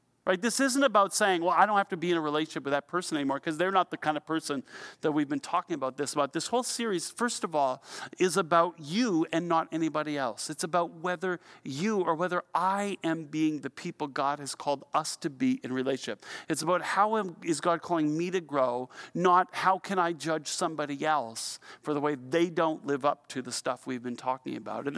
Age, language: 40-59, English